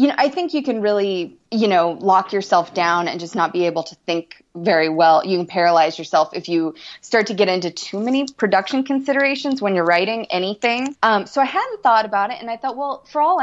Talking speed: 230 wpm